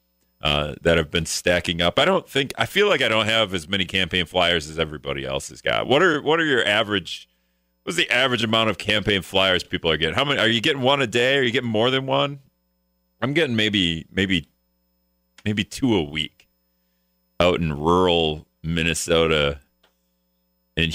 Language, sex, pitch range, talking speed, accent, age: English, male, 75-110 Hz, 190 wpm, American, 40-59